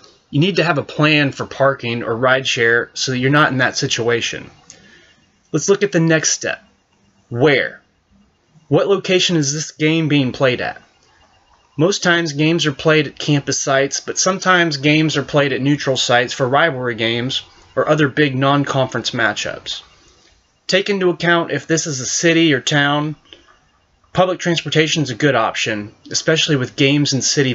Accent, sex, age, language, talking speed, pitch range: American, male, 30-49, English, 170 wpm, 130-155 Hz